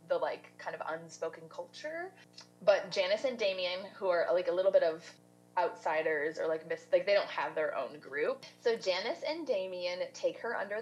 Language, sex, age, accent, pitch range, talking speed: English, female, 20-39, American, 160-270 Hz, 195 wpm